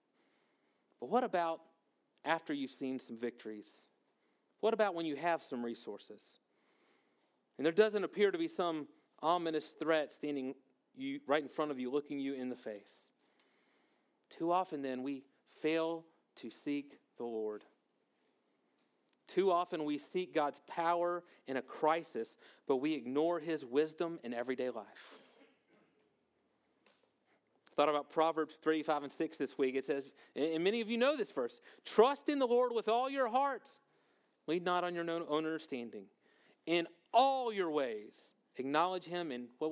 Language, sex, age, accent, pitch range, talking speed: English, male, 40-59, American, 145-225 Hz, 155 wpm